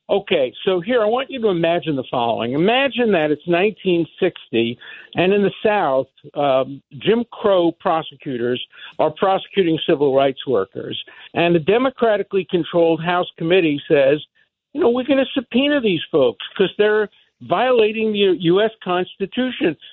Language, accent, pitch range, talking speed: English, American, 165-230 Hz, 145 wpm